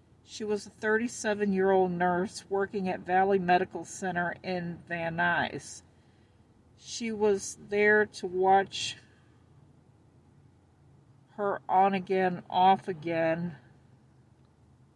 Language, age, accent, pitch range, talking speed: English, 50-69, American, 170-200 Hz, 85 wpm